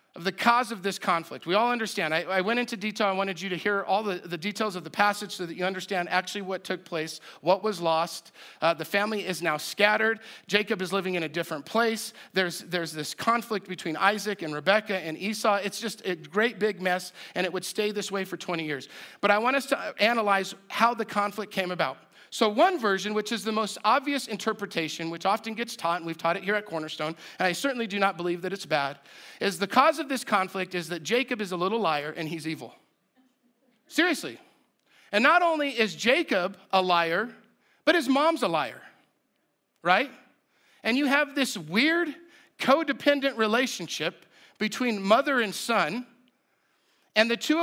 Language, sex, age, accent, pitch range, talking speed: English, male, 40-59, American, 180-245 Hz, 200 wpm